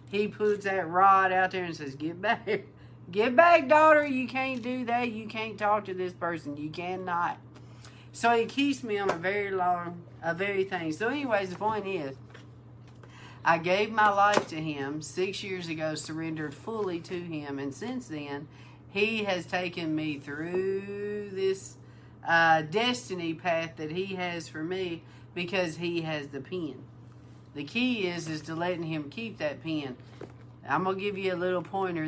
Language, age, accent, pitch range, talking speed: English, 50-69, American, 150-195 Hz, 175 wpm